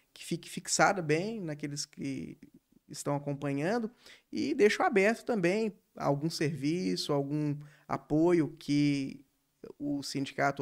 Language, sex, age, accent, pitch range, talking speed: Portuguese, male, 20-39, Brazilian, 145-185 Hz, 105 wpm